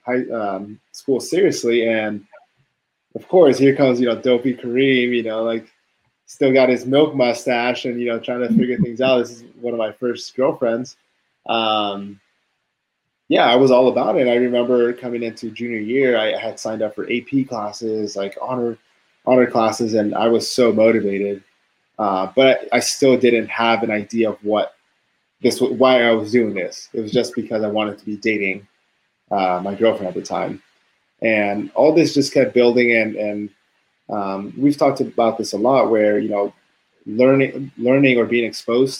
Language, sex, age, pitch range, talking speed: English, male, 20-39, 105-125 Hz, 185 wpm